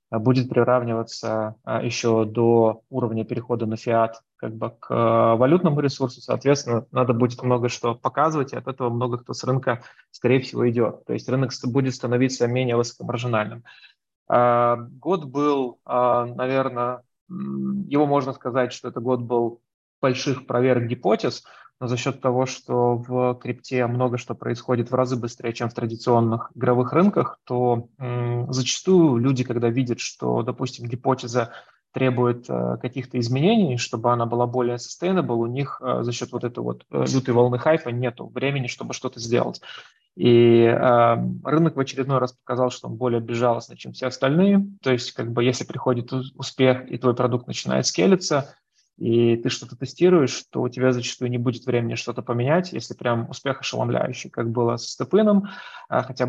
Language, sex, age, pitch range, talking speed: Russian, male, 20-39, 120-130 Hz, 165 wpm